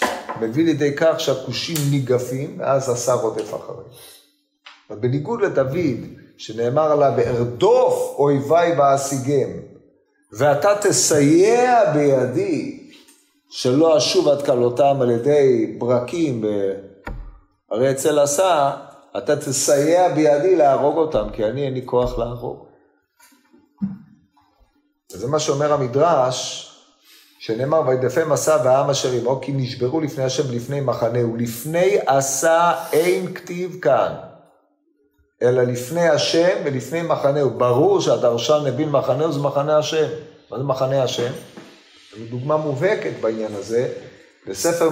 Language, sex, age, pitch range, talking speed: Hebrew, male, 40-59, 125-170 Hz, 115 wpm